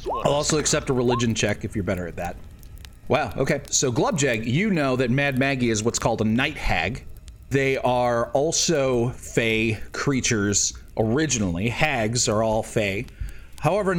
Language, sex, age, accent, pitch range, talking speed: English, male, 30-49, American, 105-135 Hz, 160 wpm